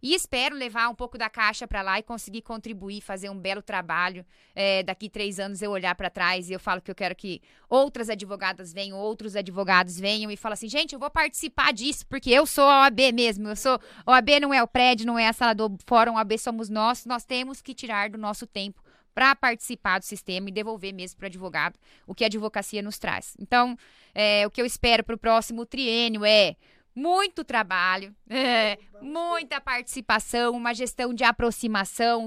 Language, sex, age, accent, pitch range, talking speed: Portuguese, female, 20-39, Brazilian, 205-245 Hz, 205 wpm